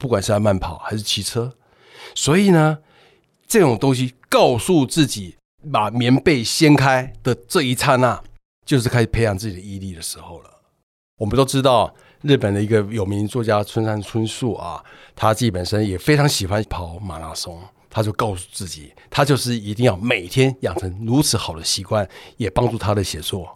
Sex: male